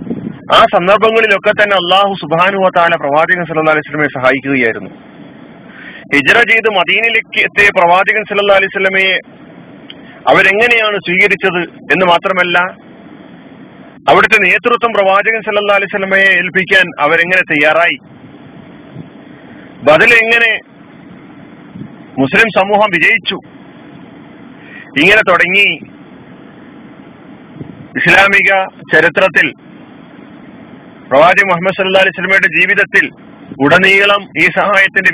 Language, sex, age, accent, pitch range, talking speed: Malayalam, male, 40-59, native, 175-220 Hz, 80 wpm